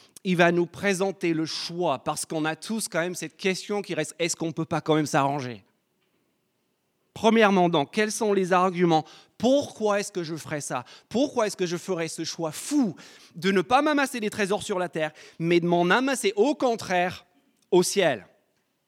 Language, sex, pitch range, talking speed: French, male, 170-220 Hz, 195 wpm